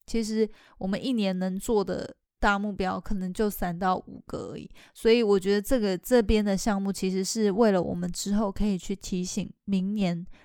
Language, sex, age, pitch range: Chinese, female, 20-39, 185-210 Hz